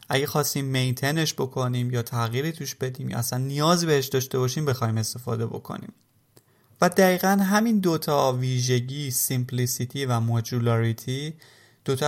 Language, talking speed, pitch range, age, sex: Persian, 130 wpm, 120-150 Hz, 30-49, male